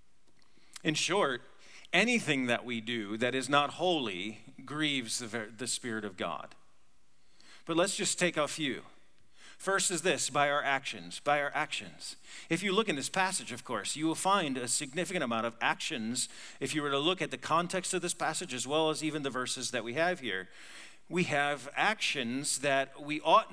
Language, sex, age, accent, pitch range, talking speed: English, male, 40-59, American, 130-180 Hz, 185 wpm